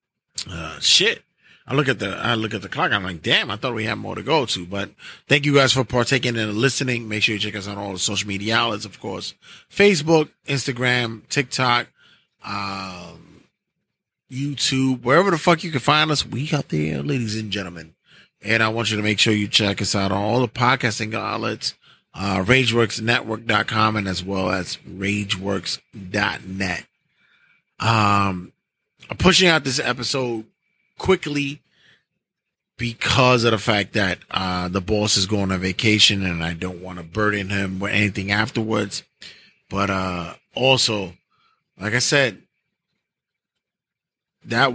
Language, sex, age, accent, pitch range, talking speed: English, male, 20-39, American, 100-130 Hz, 160 wpm